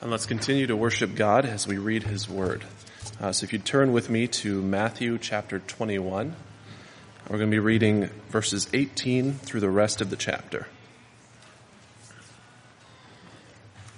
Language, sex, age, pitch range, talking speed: English, male, 20-39, 105-120 Hz, 150 wpm